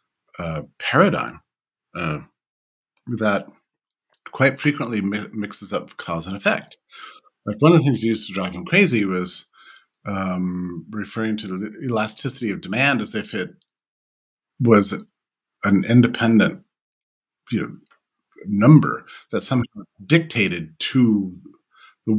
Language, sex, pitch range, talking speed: English, male, 95-120 Hz, 110 wpm